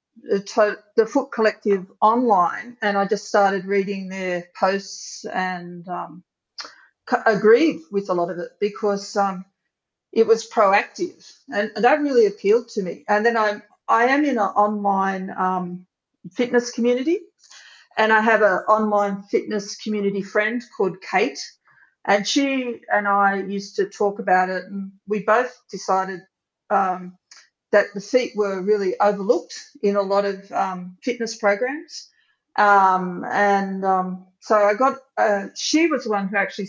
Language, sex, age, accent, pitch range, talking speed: English, female, 50-69, Australian, 195-235 Hz, 145 wpm